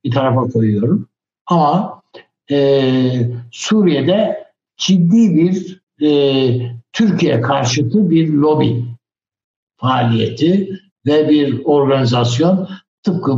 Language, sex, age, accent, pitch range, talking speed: Turkish, male, 60-79, native, 120-180 Hz, 80 wpm